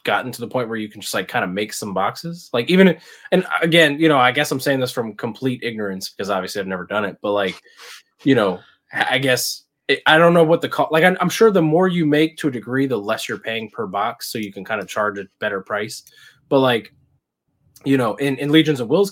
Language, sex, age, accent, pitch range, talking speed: English, male, 20-39, American, 115-150 Hz, 255 wpm